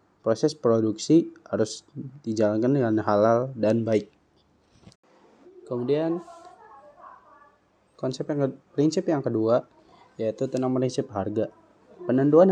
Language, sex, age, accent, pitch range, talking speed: Indonesian, male, 20-39, native, 110-150 Hz, 90 wpm